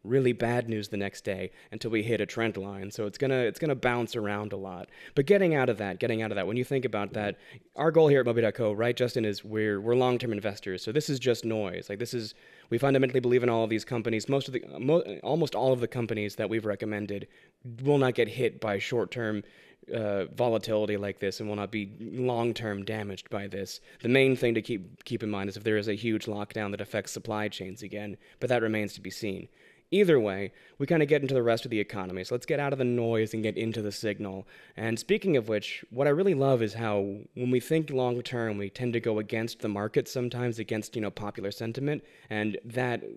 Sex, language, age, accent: male, English, 20-39, American